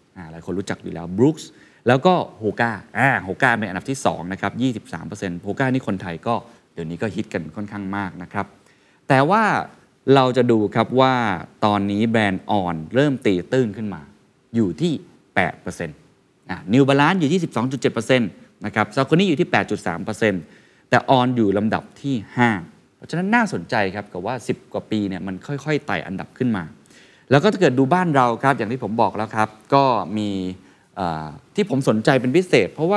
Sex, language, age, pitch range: male, Thai, 20-39, 100-135 Hz